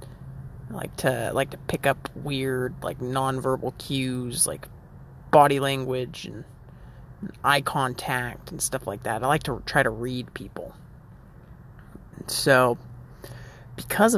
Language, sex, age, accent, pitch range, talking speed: English, male, 30-49, American, 130-150 Hz, 135 wpm